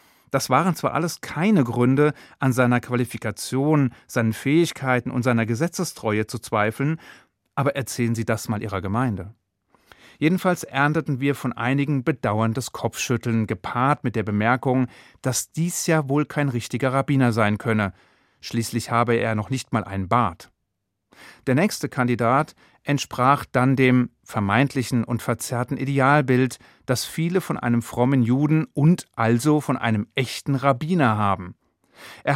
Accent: German